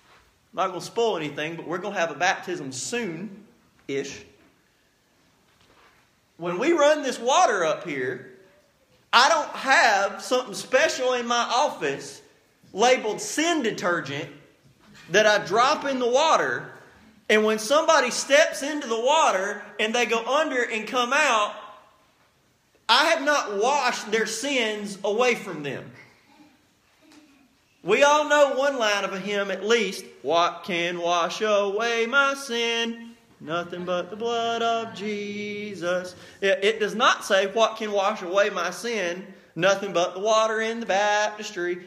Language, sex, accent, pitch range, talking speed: English, male, American, 195-255 Hz, 145 wpm